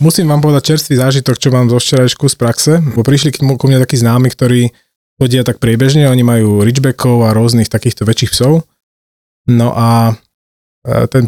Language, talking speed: Slovak, 170 wpm